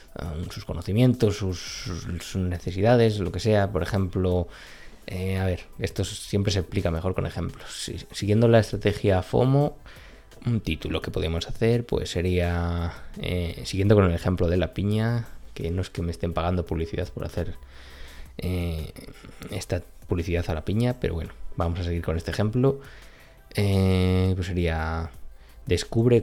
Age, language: 20-39, Spanish